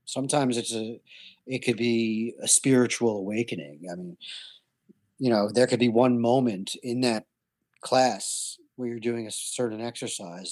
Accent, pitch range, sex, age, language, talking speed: American, 110-125 Hz, male, 40-59, English, 155 wpm